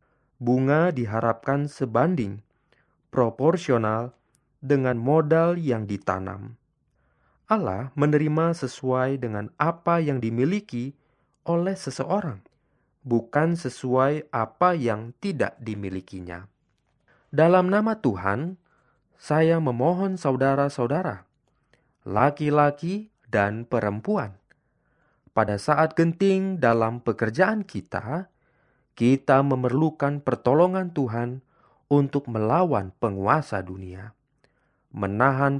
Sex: male